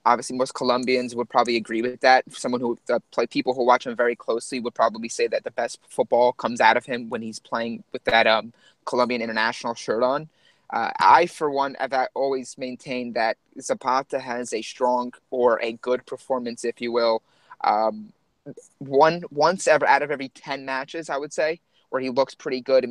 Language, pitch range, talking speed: English, 120-140 Hz, 195 wpm